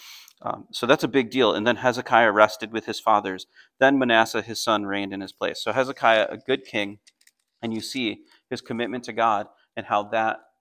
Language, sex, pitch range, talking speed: English, male, 105-130 Hz, 205 wpm